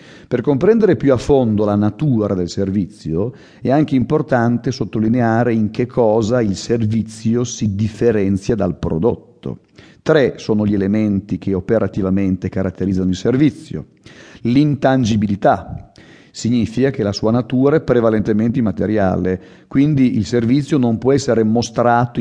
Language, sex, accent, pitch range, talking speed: Italian, male, native, 105-135 Hz, 125 wpm